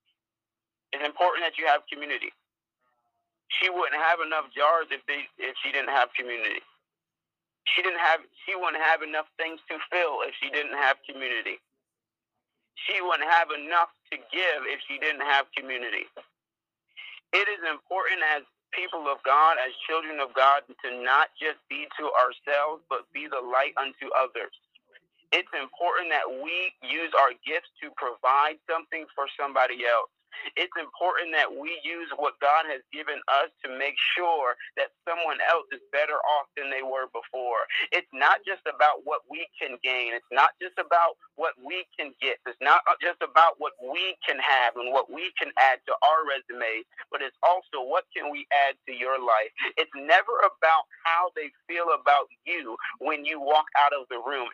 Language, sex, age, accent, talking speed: English, male, 40-59, American, 175 wpm